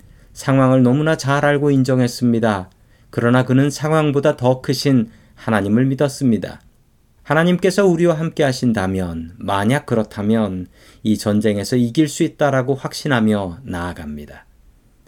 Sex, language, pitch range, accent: male, Korean, 110-150 Hz, native